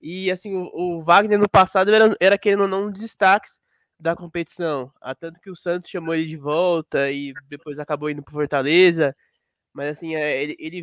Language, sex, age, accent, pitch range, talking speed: Portuguese, male, 20-39, Brazilian, 155-190 Hz, 185 wpm